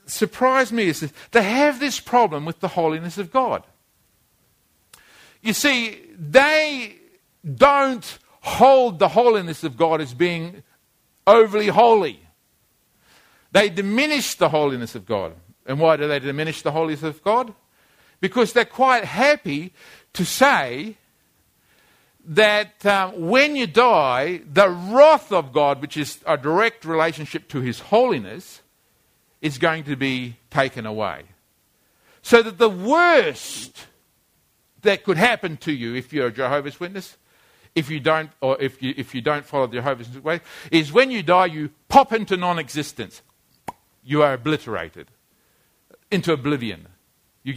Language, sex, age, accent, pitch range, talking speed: English, male, 50-69, Australian, 140-225 Hz, 140 wpm